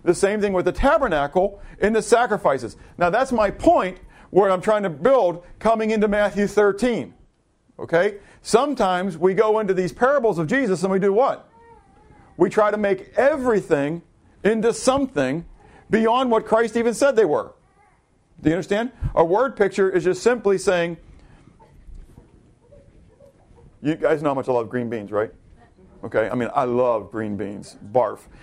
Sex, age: male, 50-69